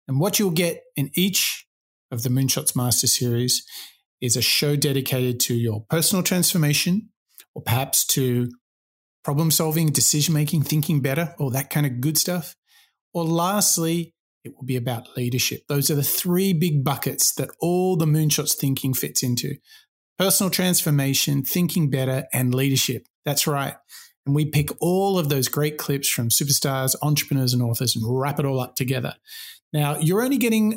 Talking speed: 165 wpm